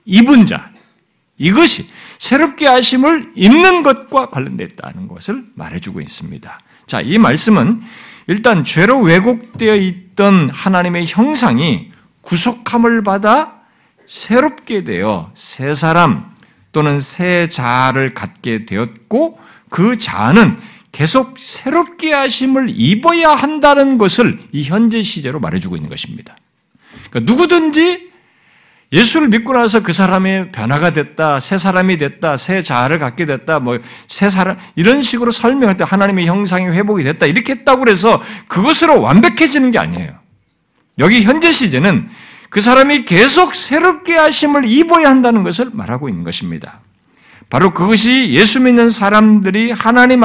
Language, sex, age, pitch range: Korean, male, 50-69, 185-260 Hz